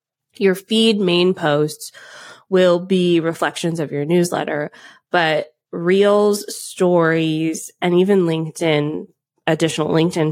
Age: 20-39